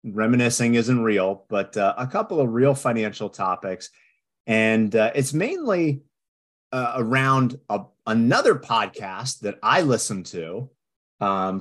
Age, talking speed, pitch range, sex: 30-49, 125 wpm, 105-130 Hz, male